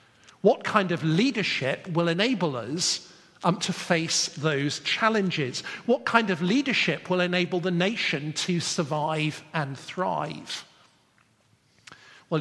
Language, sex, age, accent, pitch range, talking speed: English, male, 50-69, British, 140-185 Hz, 120 wpm